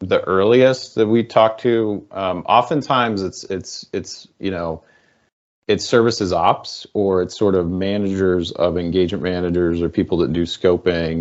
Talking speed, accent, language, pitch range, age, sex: 155 wpm, American, English, 85-105 Hz, 30-49, male